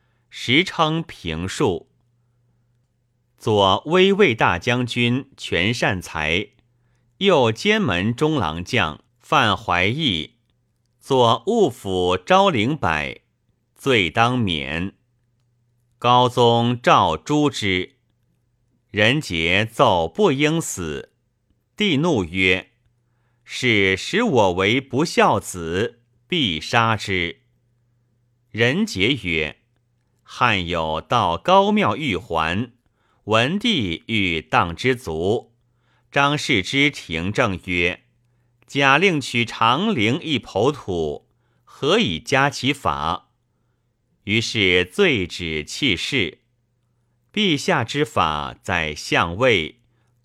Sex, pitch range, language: male, 100-130 Hz, Chinese